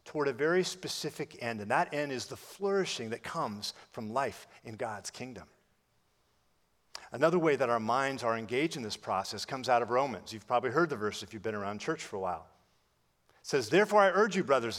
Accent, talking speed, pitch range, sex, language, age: American, 210 wpm, 120-175 Hz, male, English, 50-69